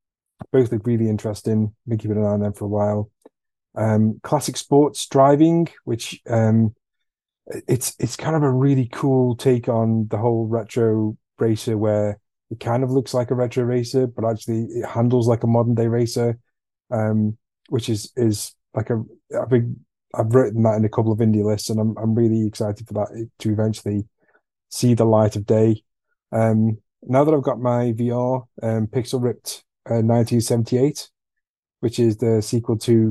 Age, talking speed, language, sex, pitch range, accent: 30-49, 180 wpm, English, male, 110-120 Hz, British